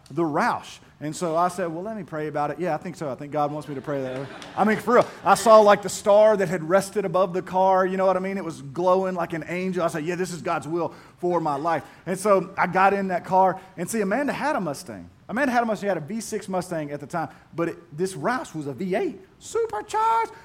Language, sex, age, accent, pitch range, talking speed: English, male, 30-49, American, 170-225 Hz, 270 wpm